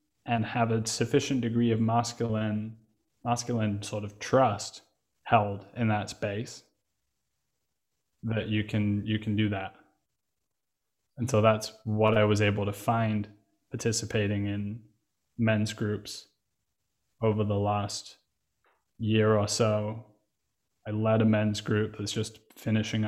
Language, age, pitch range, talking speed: English, 20-39, 105-115 Hz, 125 wpm